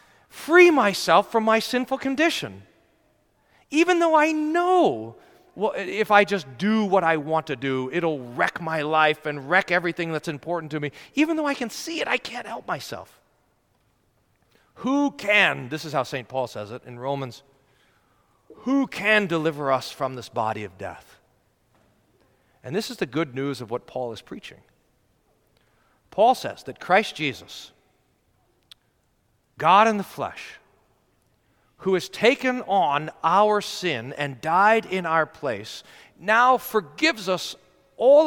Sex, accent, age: male, American, 40-59